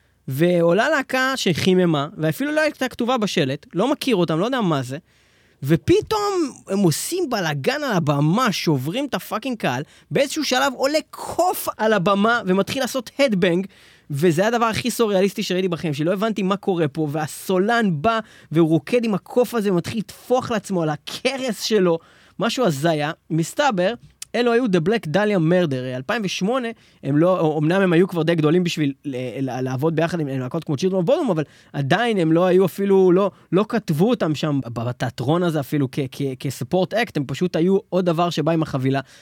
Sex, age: male, 20-39